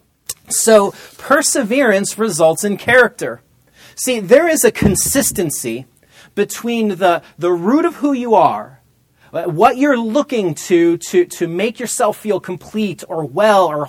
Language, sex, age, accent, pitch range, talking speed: English, male, 30-49, American, 155-220 Hz, 135 wpm